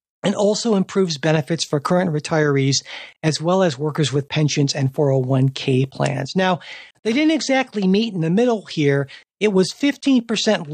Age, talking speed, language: 50-69, 155 wpm, English